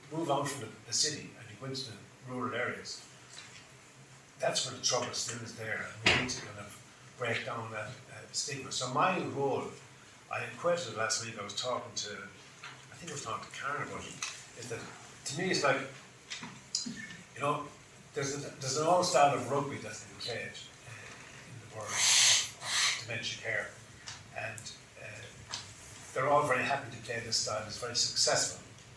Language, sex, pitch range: English, male, 115-135 Hz